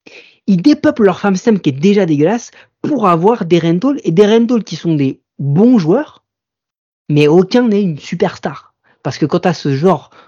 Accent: French